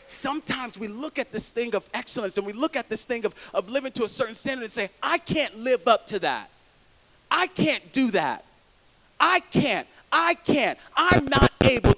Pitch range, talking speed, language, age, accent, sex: 230-320 Hz, 200 wpm, English, 40-59, American, male